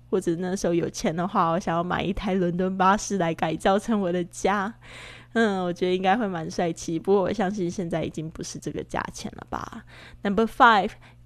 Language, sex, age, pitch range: Chinese, female, 10-29, 175-220 Hz